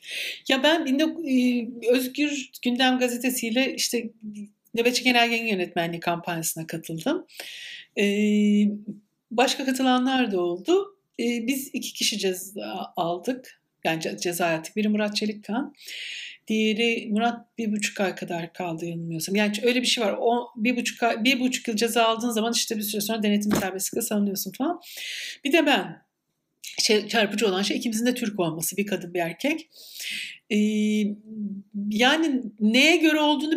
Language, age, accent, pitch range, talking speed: Turkish, 60-79, native, 205-275 Hz, 140 wpm